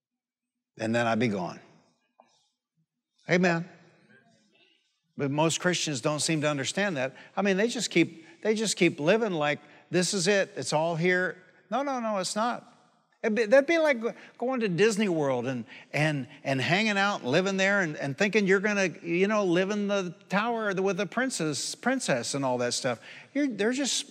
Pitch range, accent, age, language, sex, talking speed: 150-205 Hz, American, 60-79, English, male, 185 wpm